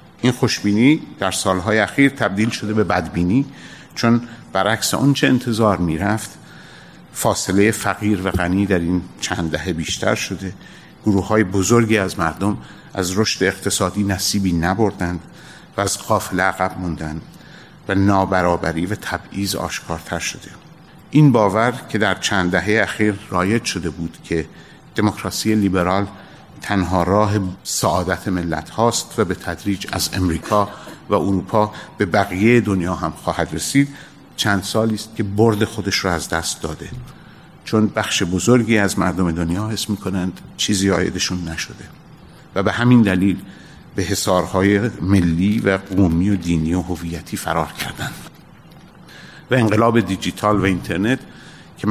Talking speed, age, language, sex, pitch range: 140 wpm, 50-69, Persian, male, 90-110 Hz